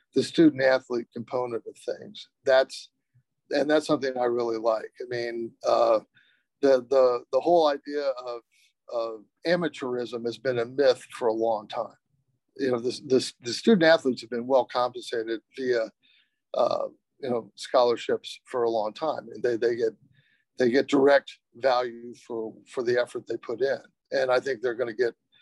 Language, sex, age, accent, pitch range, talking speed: English, male, 50-69, American, 120-150 Hz, 170 wpm